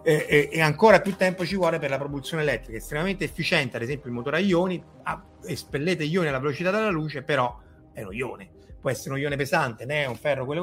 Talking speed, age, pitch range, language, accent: 230 wpm, 30-49, 120-155 Hz, Italian, native